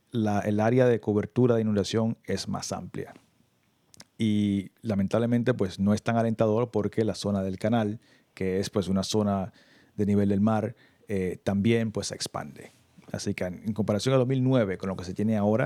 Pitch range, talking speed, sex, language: 100-115 Hz, 185 wpm, male, Spanish